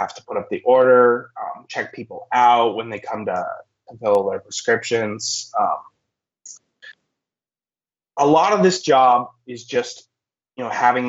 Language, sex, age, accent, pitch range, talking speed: English, male, 20-39, American, 115-140 Hz, 155 wpm